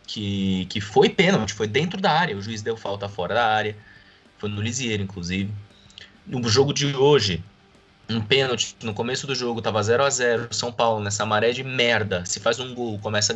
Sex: male